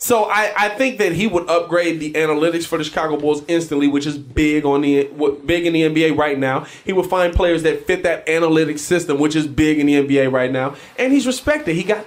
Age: 20-39